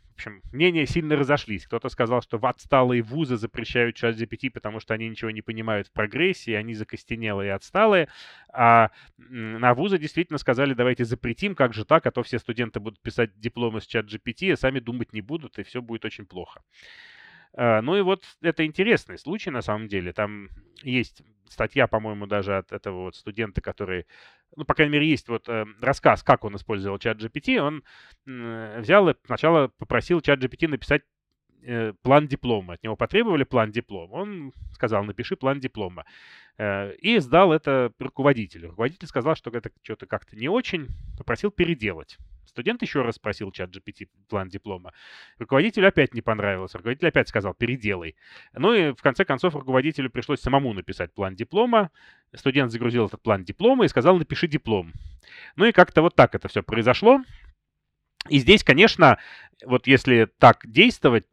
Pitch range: 110-145 Hz